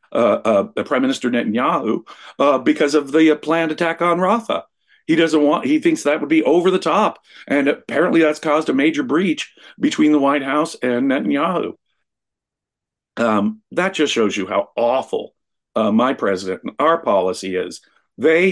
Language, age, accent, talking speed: English, 50-69, American, 175 wpm